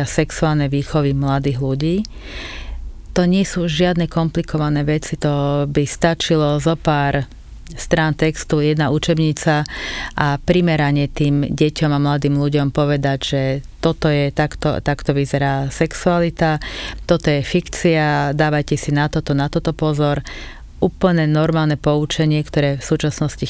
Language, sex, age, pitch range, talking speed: English, female, 30-49, 140-160 Hz, 130 wpm